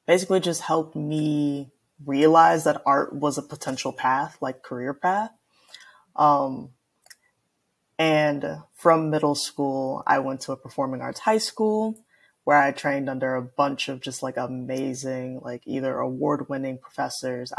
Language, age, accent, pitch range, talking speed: English, 20-39, American, 130-165 Hz, 140 wpm